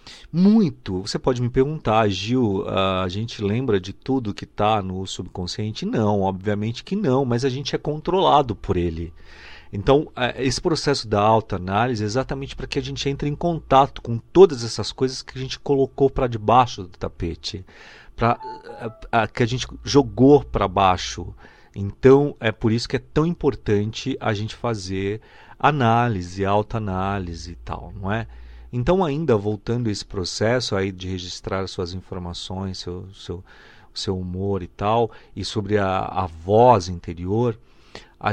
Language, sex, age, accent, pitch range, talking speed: Portuguese, male, 40-59, Brazilian, 95-130 Hz, 160 wpm